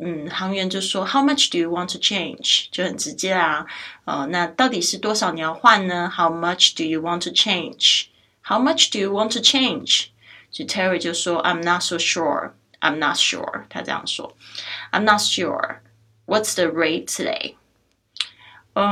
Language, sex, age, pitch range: Chinese, female, 20-39, 175-215 Hz